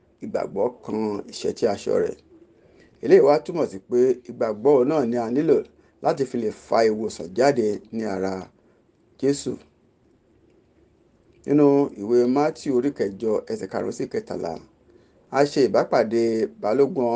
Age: 50-69